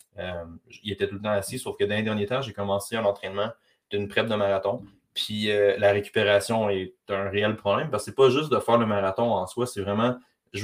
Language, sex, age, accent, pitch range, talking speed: French, male, 20-39, Canadian, 100-115 Hz, 245 wpm